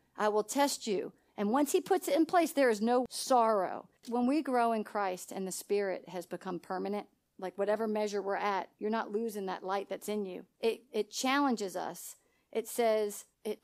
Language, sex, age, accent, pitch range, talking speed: English, female, 40-59, American, 205-250 Hz, 200 wpm